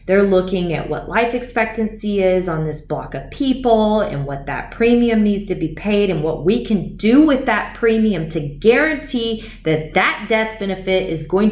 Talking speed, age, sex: 190 wpm, 20-39, female